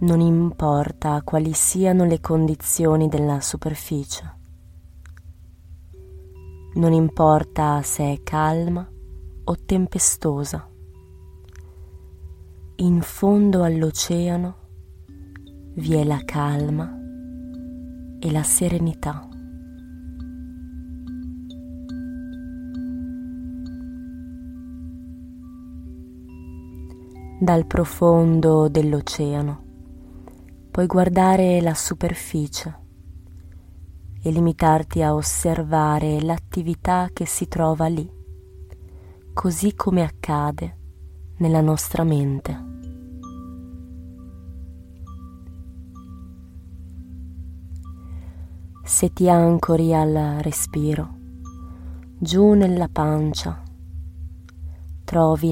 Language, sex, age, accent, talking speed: Italian, female, 20-39, native, 60 wpm